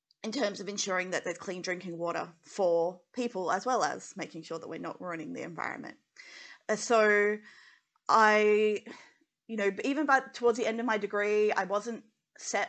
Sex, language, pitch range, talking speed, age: female, English, 190-235 Hz, 180 wpm, 30-49